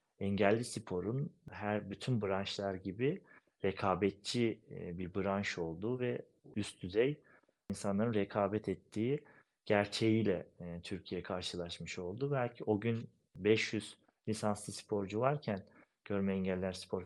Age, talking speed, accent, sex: 40-59, 105 wpm, native, male